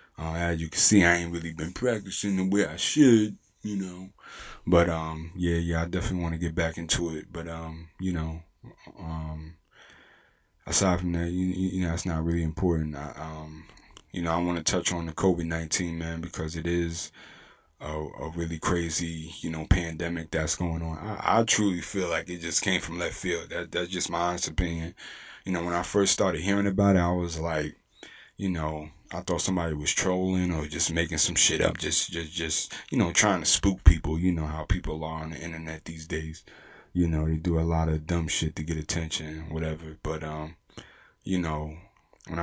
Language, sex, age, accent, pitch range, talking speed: English, male, 20-39, American, 80-90 Hz, 205 wpm